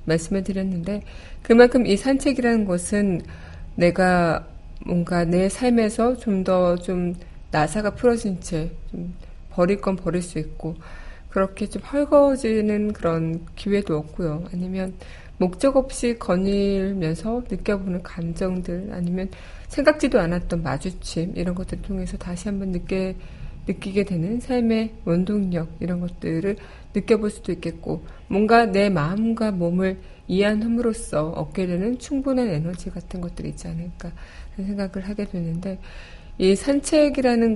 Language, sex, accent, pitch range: Korean, female, native, 175-210 Hz